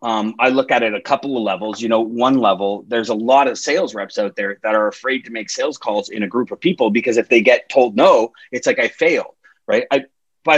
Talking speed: 260 wpm